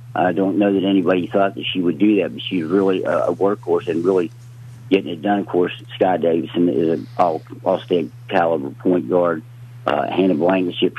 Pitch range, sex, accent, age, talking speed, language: 95-120 Hz, male, American, 50-69, 185 wpm, English